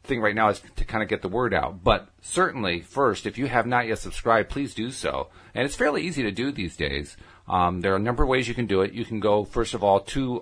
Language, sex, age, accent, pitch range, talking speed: English, male, 50-69, American, 85-110 Hz, 280 wpm